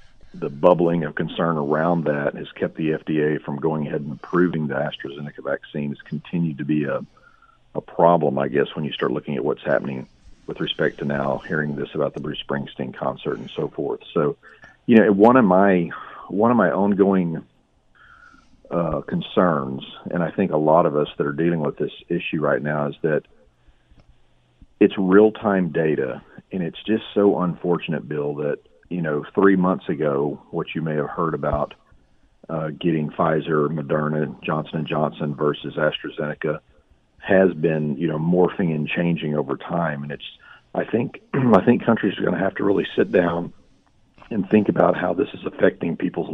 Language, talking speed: English, 180 wpm